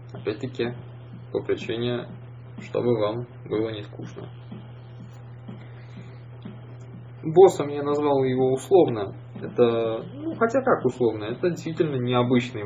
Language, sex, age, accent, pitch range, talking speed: Russian, male, 20-39, native, 110-125 Hz, 100 wpm